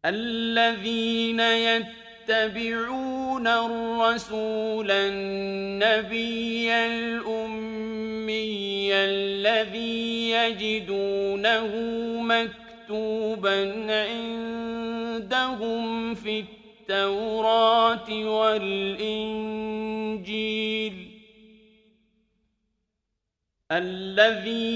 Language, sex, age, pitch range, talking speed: Urdu, male, 50-69, 215-230 Hz, 30 wpm